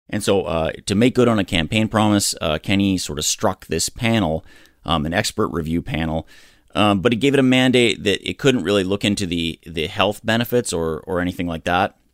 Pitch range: 85-110 Hz